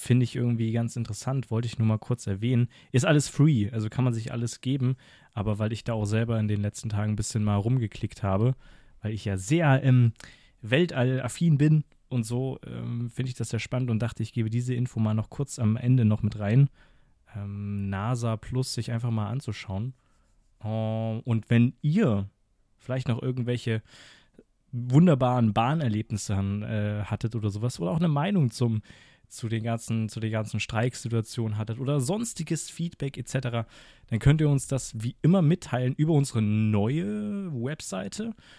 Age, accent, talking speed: 20-39, German, 175 wpm